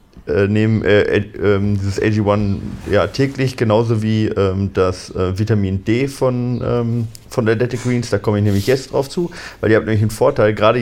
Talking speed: 195 wpm